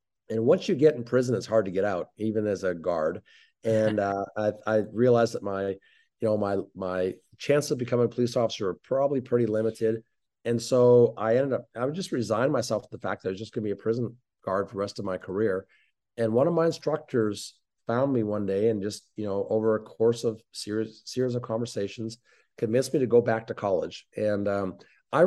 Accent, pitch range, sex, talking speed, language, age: American, 100-120 Hz, male, 230 wpm, English, 50-69